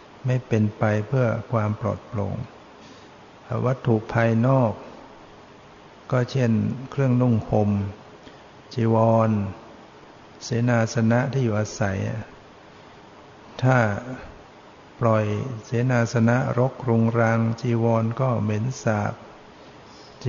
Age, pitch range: 60-79, 110-120 Hz